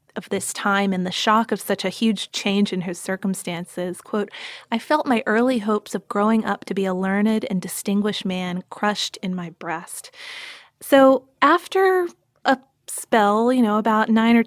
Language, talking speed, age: English, 180 wpm, 20-39